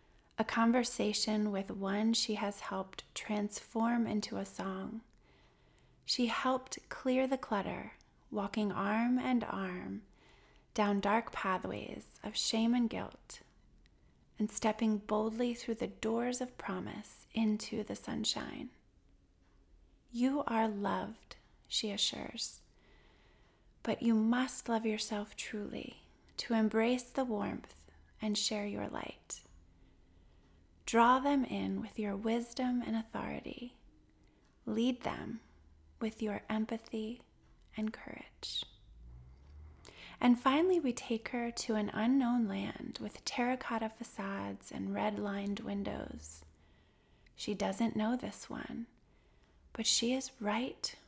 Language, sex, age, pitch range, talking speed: English, female, 30-49, 200-235 Hz, 115 wpm